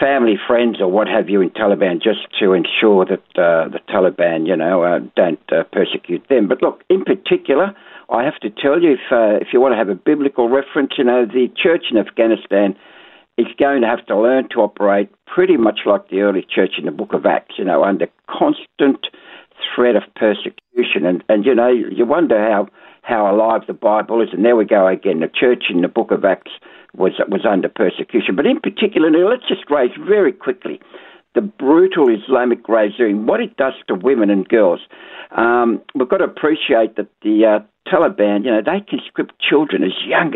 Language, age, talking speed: English, 60-79, 200 wpm